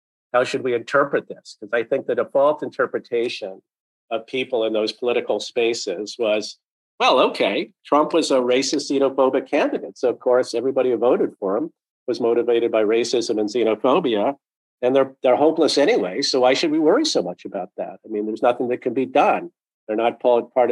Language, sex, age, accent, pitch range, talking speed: English, male, 50-69, American, 115-145 Hz, 190 wpm